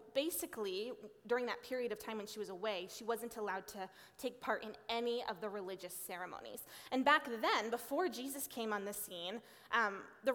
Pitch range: 205-260 Hz